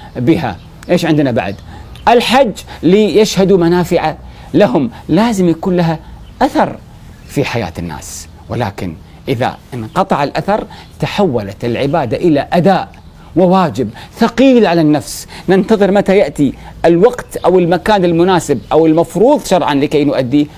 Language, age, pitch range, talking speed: Arabic, 40-59, 120-170 Hz, 110 wpm